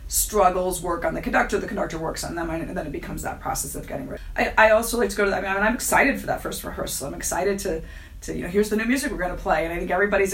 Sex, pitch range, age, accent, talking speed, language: female, 180-215 Hz, 30-49, American, 315 wpm, English